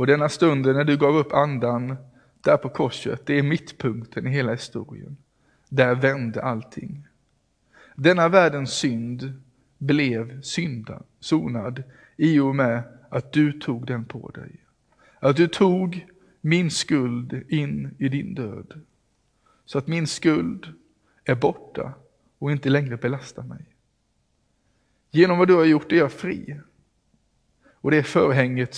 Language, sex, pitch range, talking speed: English, male, 125-150 Hz, 140 wpm